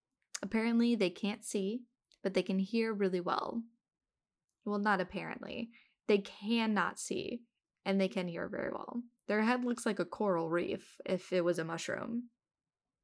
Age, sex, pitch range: 10-29, female, 190-235 Hz